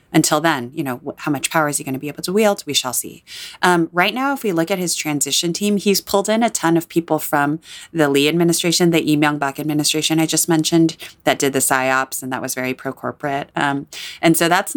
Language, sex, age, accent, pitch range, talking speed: English, female, 30-49, American, 140-175 Hz, 235 wpm